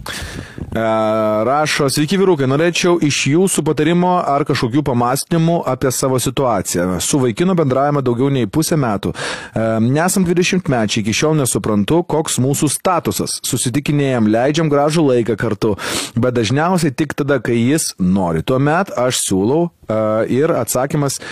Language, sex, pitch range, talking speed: English, male, 110-155 Hz, 130 wpm